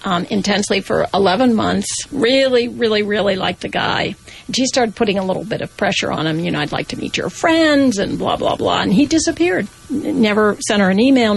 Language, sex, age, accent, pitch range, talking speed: English, female, 50-69, American, 195-245 Hz, 215 wpm